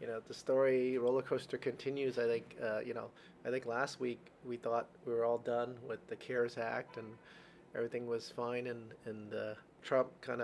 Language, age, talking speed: English, 30-49, 200 wpm